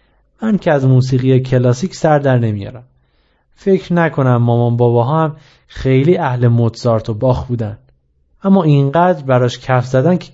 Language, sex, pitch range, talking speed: Persian, male, 115-165 Hz, 145 wpm